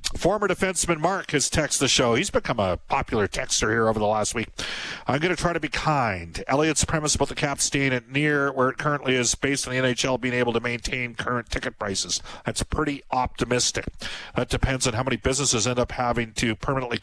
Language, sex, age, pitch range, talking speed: English, male, 50-69, 110-140 Hz, 215 wpm